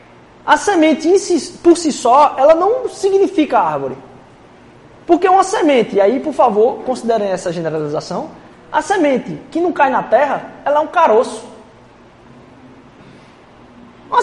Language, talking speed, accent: Portuguese, 145 wpm, Brazilian